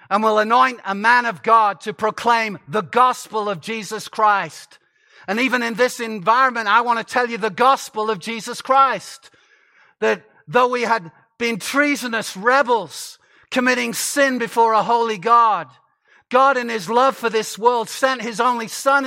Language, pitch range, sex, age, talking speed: English, 215-255 Hz, male, 50-69, 165 wpm